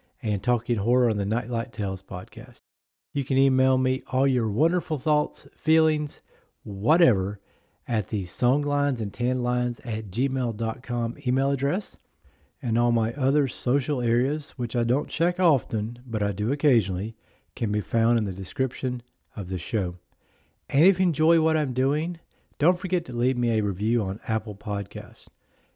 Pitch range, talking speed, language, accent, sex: 100-135 Hz, 155 wpm, English, American, male